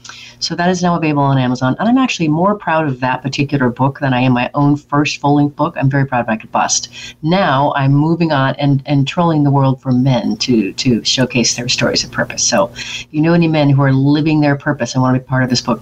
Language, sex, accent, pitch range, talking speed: English, female, American, 125-150 Hz, 260 wpm